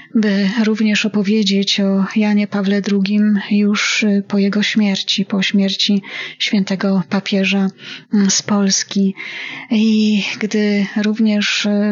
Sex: female